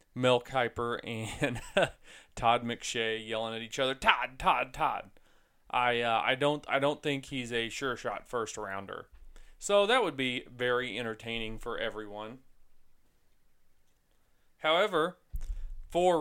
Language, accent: English, American